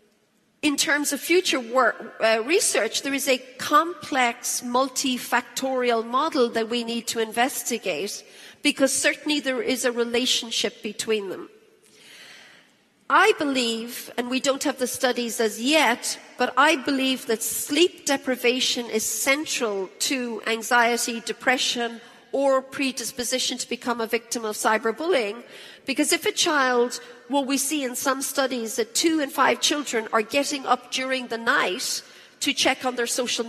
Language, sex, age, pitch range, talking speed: English, female, 40-59, 235-280 Hz, 145 wpm